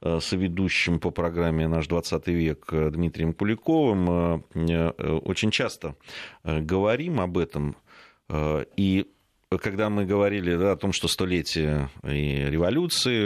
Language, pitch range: Russian, 80-100 Hz